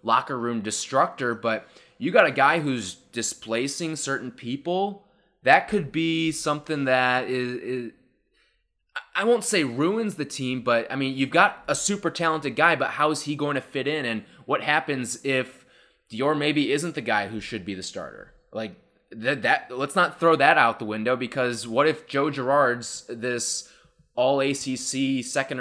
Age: 20-39